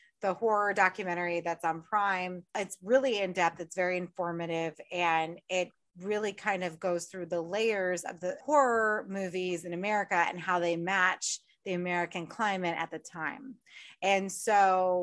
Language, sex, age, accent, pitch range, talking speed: English, female, 30-49, American, 170-210 Hz, 155 wpm